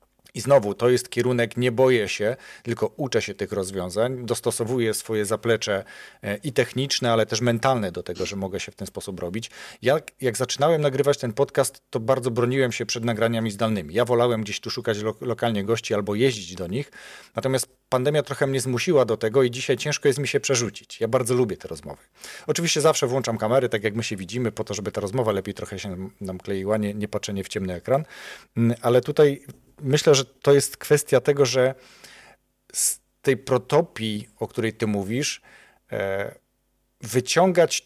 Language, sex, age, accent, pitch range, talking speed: Polish, male, 40-59, native, 110-135 Hz, 180 wpm